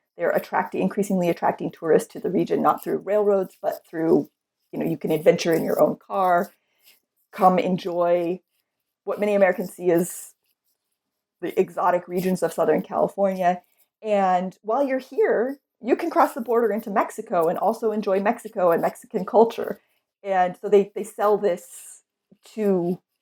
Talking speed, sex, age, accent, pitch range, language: 155 wpm, female, 30-49, American, 185-230 Hz, English